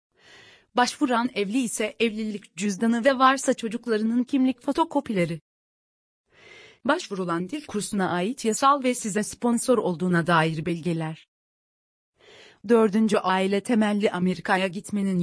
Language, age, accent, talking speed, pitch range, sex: Turkish, 40-59, native, 100 wpm, 190-240 Hz, female